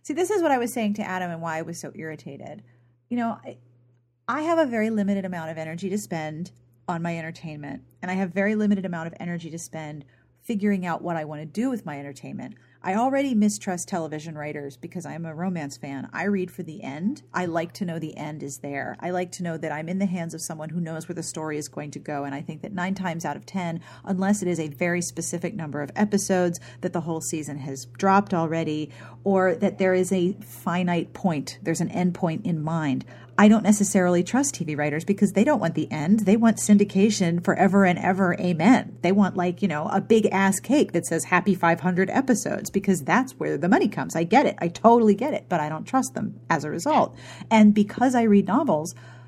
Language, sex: English, female